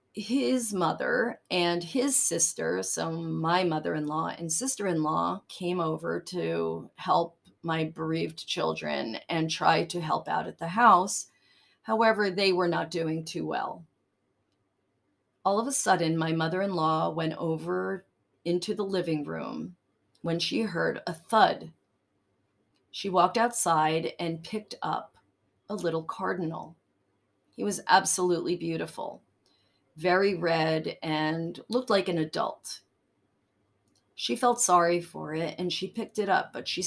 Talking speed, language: 140 wpm, English